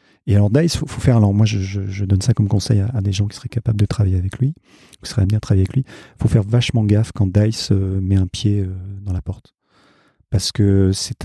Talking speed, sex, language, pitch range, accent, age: 250 wpm, male, French, 95-115 Hz, French, 40-59